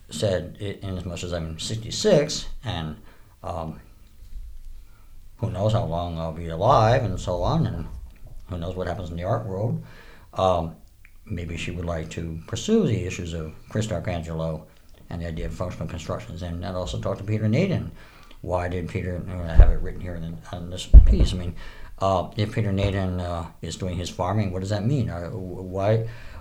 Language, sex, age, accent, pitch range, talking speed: English, male, 60-79, American, 85-110 Hz, 185 wpm